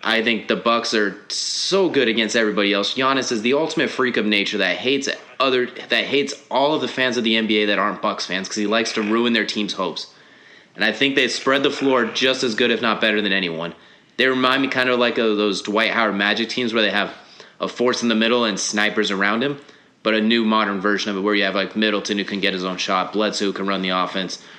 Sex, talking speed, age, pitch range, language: male, 255 wpm, 30-49, 100-120 Hz, English